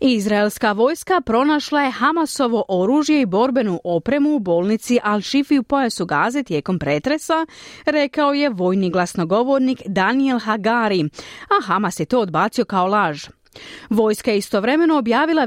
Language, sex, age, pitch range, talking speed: Croatian, female, 30-49, 190-270 Hz, 130 wpm